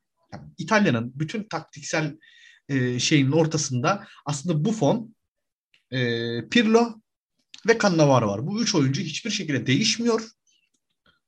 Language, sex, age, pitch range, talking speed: Turkish, male, 30-49, 135-170 Hz, 90 wpm